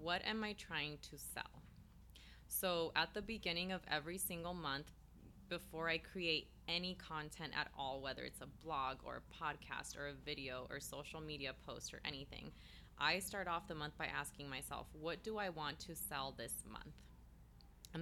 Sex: female